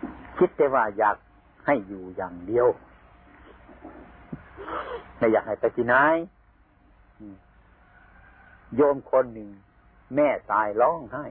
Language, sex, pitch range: Thai, male, 95-130 Hz